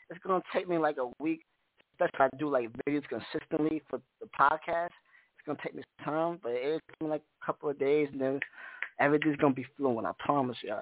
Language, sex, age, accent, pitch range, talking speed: English, male, 20-39, American, 135-165 Hz, 255 wpm